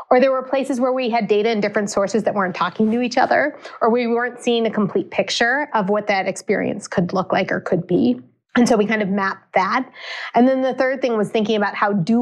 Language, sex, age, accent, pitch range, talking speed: English, female, 30-49, American, 185-225 Hz, 250 wpm